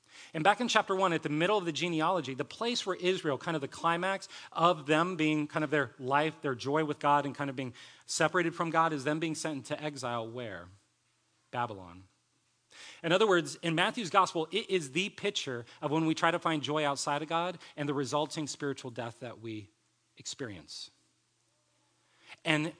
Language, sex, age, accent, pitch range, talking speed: English, male, 30-49, American, 140-185 Hz, 195 wpm